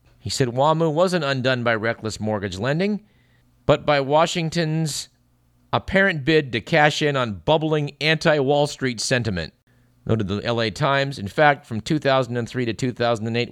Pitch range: 115-150 Hz